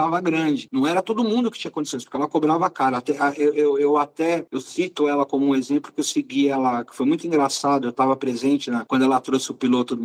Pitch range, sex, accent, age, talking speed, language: 145-195 Hz, male, Brazilian, 50-69, 245 wpm, Portuguese